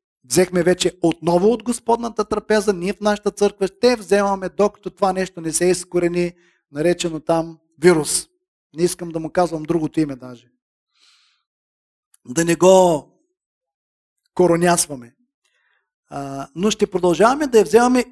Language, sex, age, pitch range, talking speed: Bulgarian, male, 50-69, 175-230 Hz, 135 wpm